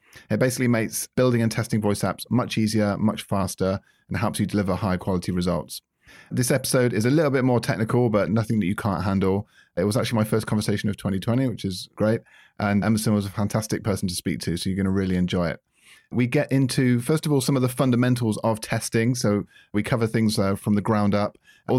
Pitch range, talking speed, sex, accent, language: 100-115 Hz, 225 wpm, male, British, English